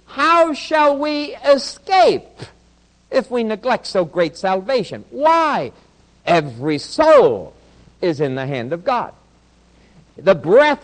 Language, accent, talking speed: English, American, 115 wpm